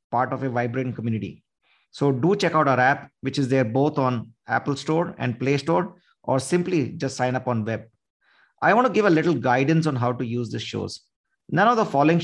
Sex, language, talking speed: male, English, 215 wpm